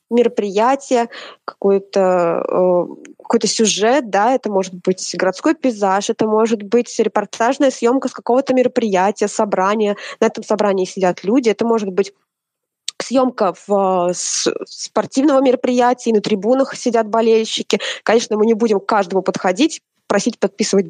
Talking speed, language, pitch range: 125 wpm, Russian, 200-250 Hz